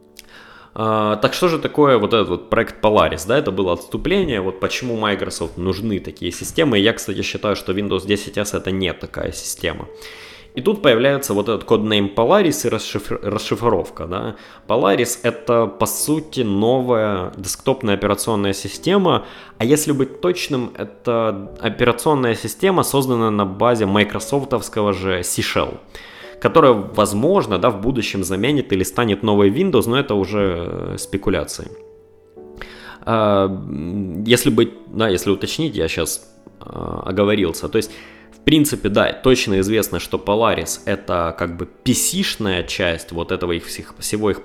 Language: Russian